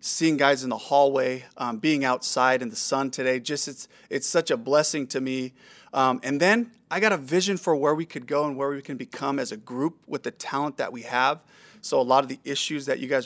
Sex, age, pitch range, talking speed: male, 30-49, 125-150 Hz, 250 wpm